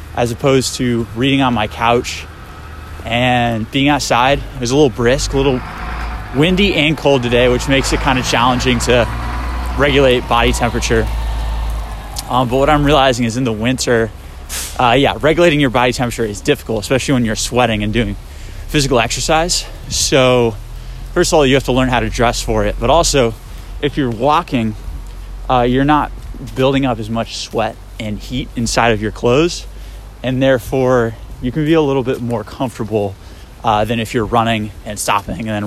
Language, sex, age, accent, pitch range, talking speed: English, male, 20-39, American, 105-130 Hz, 180 wpm